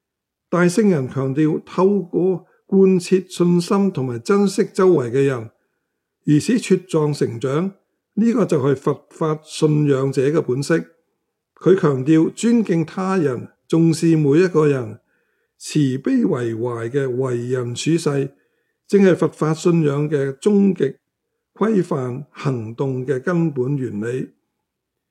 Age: 60-79